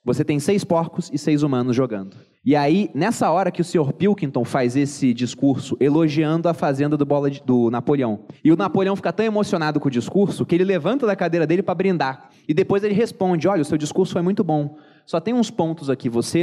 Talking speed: 225 wpm